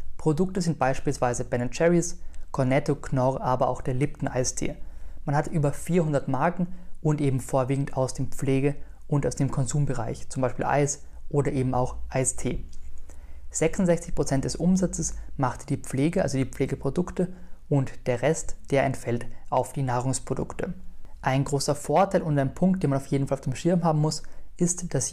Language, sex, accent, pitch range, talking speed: German, male, German, 130-155 Hz, 165 wpm